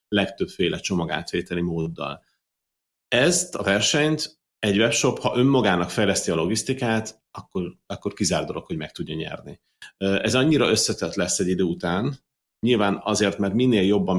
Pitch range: 90-110 Hz